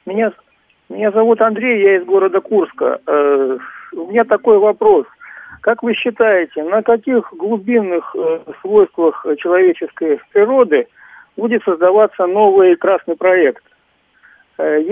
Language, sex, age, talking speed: Russian, male, 50-69, 115 wpm